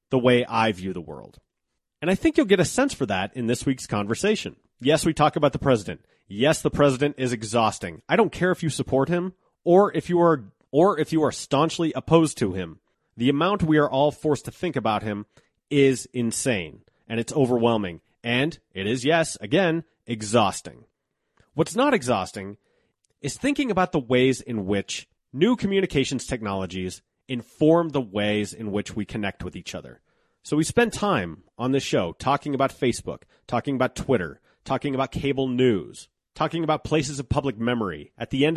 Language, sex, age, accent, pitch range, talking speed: English, male, 30-49, American, 115-155 Hz, 185 wpm